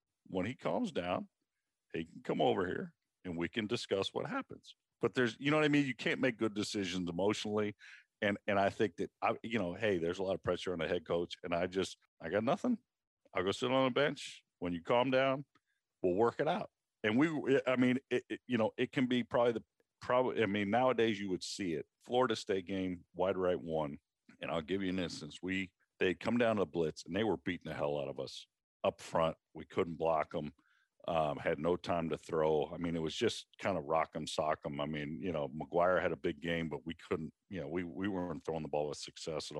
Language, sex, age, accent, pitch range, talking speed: English, male, 50-69, American, 85-115 Hz, 245 wpm